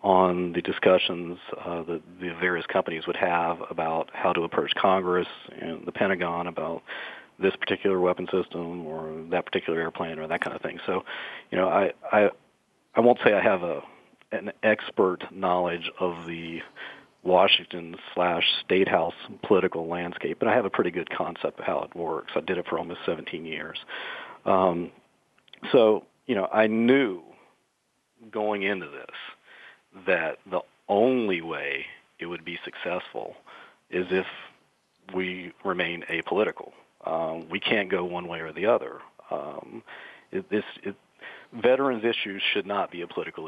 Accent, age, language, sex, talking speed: American, 50-69, English, male, 155 wpm